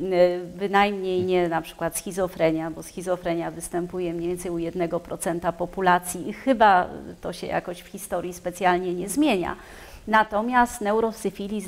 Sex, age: female, 30-49